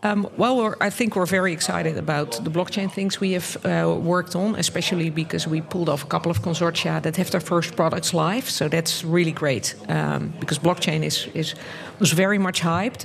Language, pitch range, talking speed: English, 155-185 Hz, 200 wpm